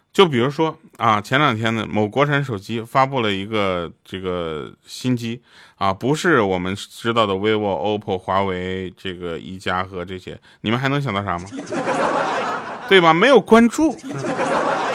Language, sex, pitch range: Chinese, male, 100-140 Hz